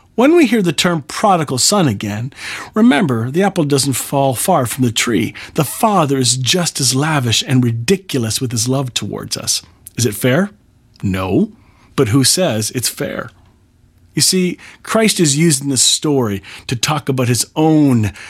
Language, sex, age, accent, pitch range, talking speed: English, male, 40-59, American, 110-150 Hz, 165 wpm